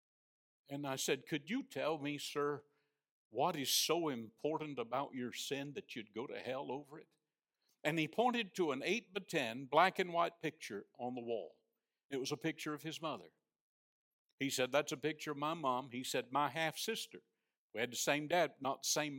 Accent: American